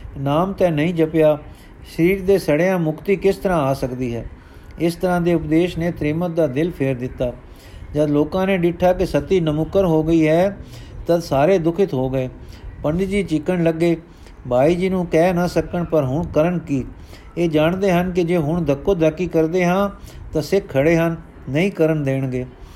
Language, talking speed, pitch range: Punjabi, 180 wpm, 145-175 Hz